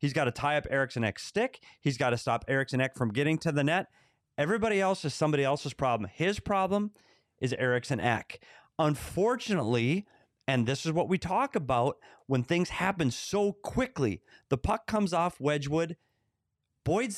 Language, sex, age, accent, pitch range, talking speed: English, male, 30-49, American, 125-170 Hz, 170 wpm